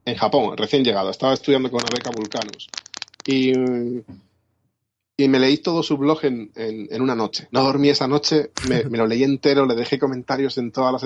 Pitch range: 115-140 Hz